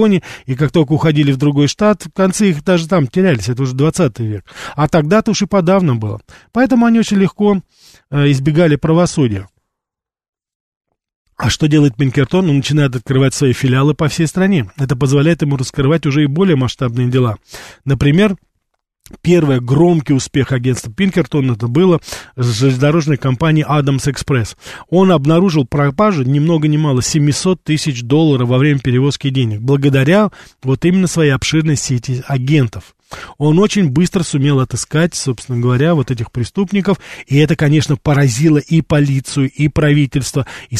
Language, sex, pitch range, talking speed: Russian, male, 135-170 Hz, 150 wpm